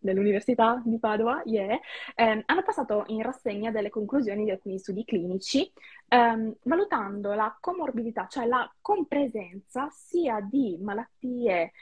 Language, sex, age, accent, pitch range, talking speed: Italian, female, 20-39, native, 200-265 Hz, 125 wpm